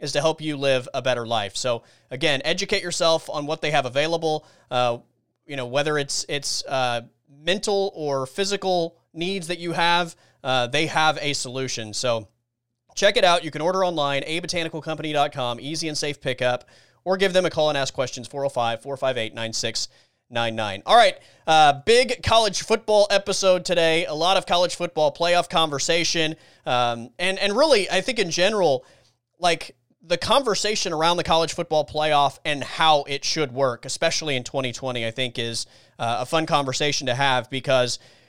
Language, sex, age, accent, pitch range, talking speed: English, male, 30-49, American, 130-175 Hz, 170 wpm